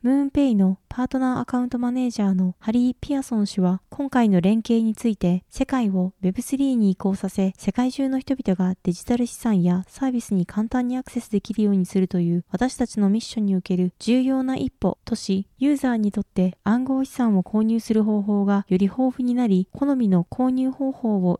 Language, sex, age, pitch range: Japanese, female, 20-39, 195-255 Hz